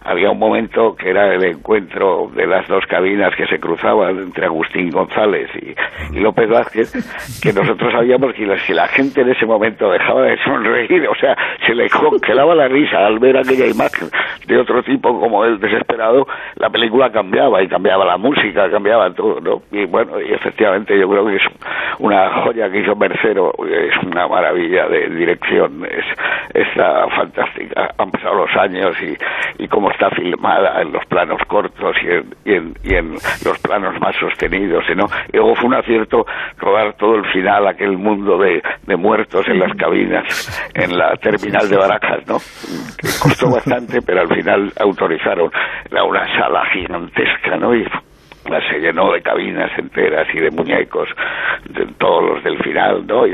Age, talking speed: 60-79, 180 wpm